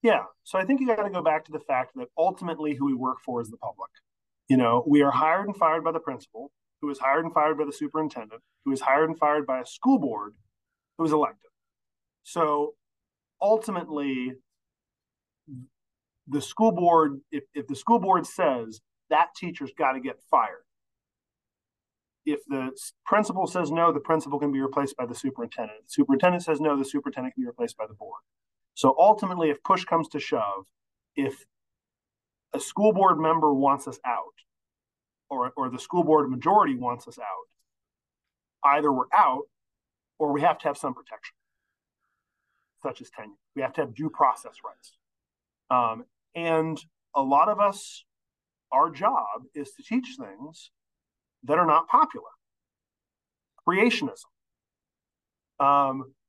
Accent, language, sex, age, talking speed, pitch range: American, English, male, 30-49, 165 wpm, 135-180 Hz